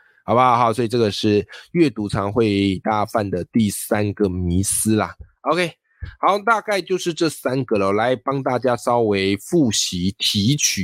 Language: Chinese